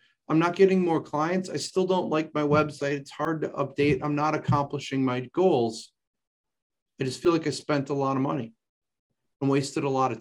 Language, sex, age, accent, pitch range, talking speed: English, male, 40-59, American, 130-185 Hz, 205 wpm